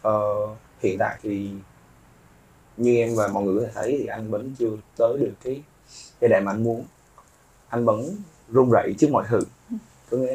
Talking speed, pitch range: 190 wpm, 100-120 Hz